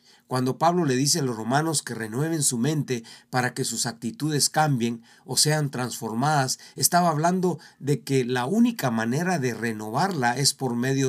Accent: Mexican